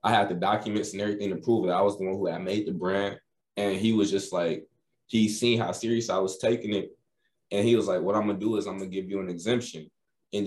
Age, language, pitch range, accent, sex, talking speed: 20-39, English, 95-115 Hz, American, male, 280 wpm